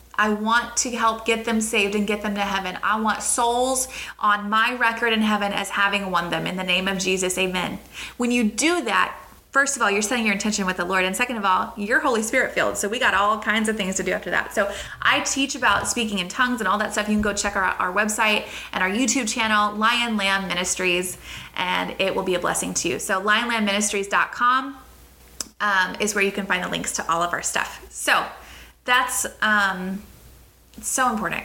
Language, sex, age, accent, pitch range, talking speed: English, female, 20-39, American, 200-250 Hz, 225 wpm